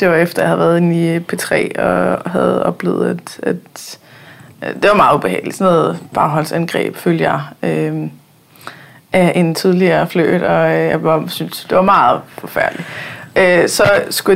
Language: Danish